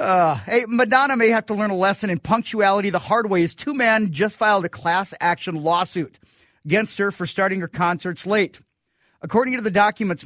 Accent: American